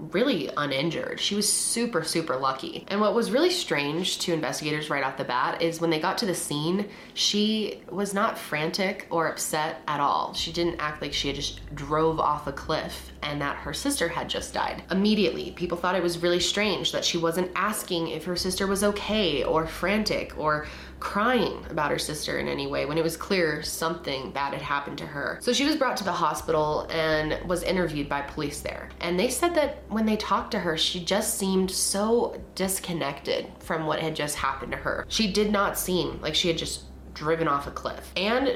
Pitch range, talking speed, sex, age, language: 155-205 Hz, 210 wpm, female, 20-39, English